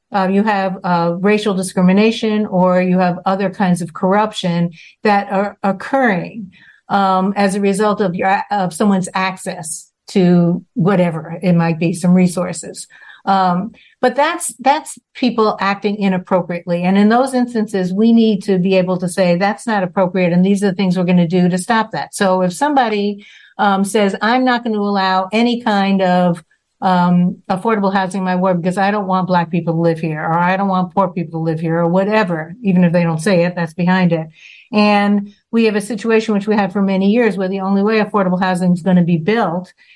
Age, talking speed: 50-69, 200 wpm